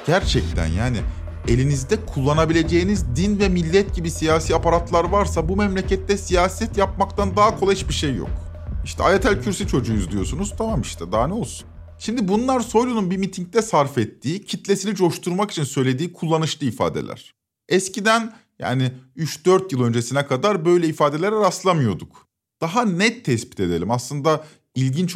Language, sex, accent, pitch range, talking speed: Turkish, male, native, 125-205 Hz, 140 wpm